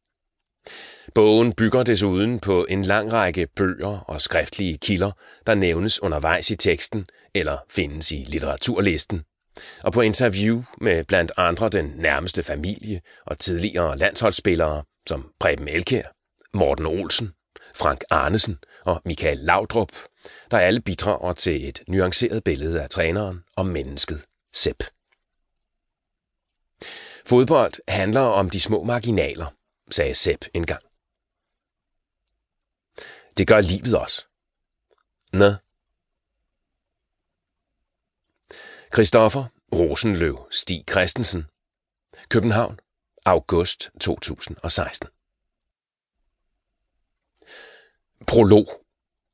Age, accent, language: 30-49, native, Danish